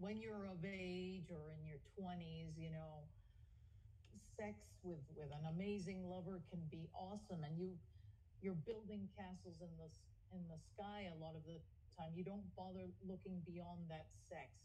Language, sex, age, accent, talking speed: English, female, 40-59, American, 170 wpm